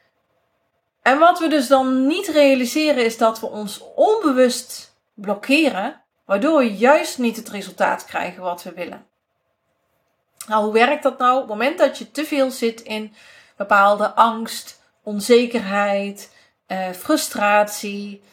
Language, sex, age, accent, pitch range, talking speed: Dutch, female, 40-59, Dutch, 205-265 Hz, 140 wpm